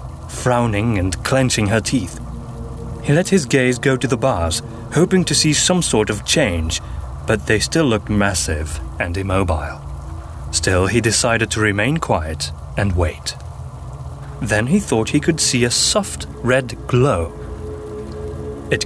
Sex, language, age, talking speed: male, English, 30-49, 145 wpm